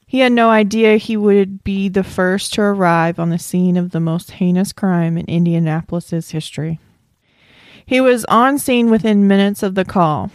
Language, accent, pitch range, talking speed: English, American, 170-200 Hz, 180 wpm